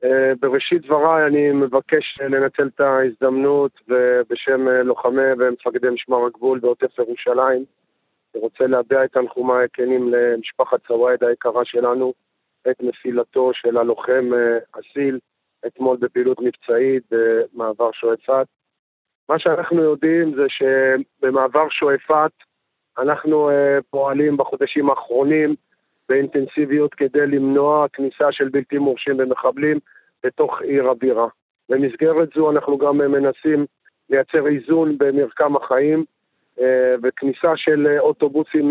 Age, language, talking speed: 40-59, English, 105 wpm